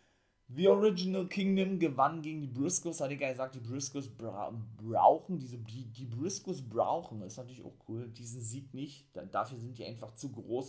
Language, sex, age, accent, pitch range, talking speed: German, male, 30-49, German, 105-135 Hz, 185 wpm